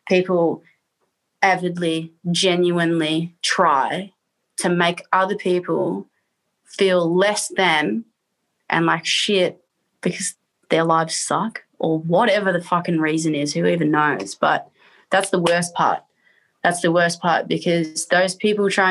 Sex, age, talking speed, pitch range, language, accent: female, 20-39, 125 wpm, 170-205 Hz, English, Australian